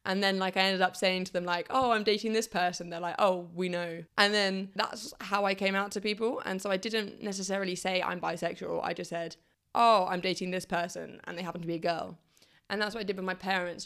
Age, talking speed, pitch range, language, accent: 20-39, 260 wpm, 180-205 Hz, English, British